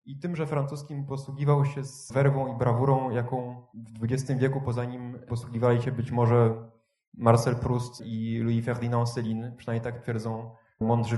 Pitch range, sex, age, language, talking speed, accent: 120-140 Hz, male, 20-39, Polish, 160 wpm, native